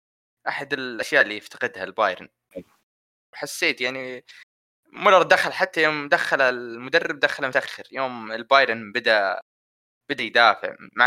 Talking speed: 115 wpm